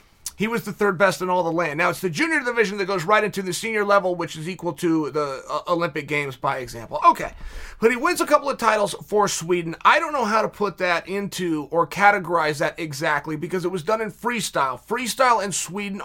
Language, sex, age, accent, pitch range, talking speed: English, male, 30-49, American, 175-230 Hz, 230 wpm